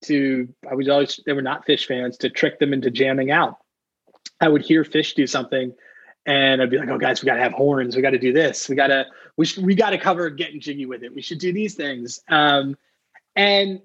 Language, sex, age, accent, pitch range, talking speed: English, male, 20-39, American, 140-180 Hz, 230 wpm